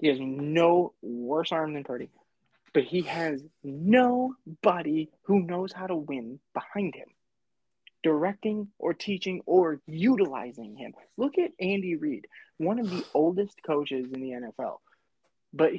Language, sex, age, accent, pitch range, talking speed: English, male, 20-39, American, 135-210 Hz, 140 wpm